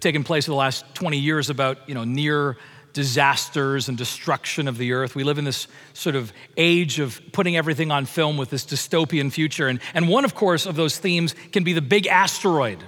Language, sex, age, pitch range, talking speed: English, male, 40-59, 150-200 Hz, 205 wpm